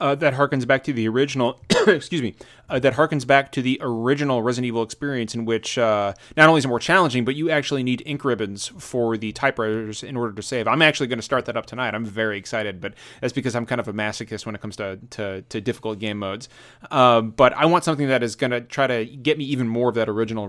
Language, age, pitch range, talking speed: English, 30-49, 120-150 Hz, 260 wpm